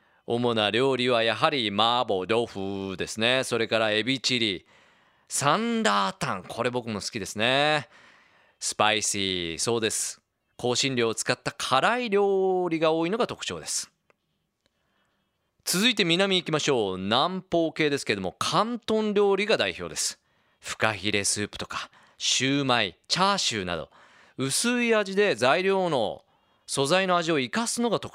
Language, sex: Japanese, male